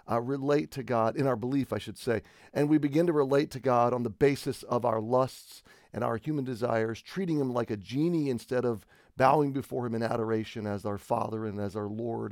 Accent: American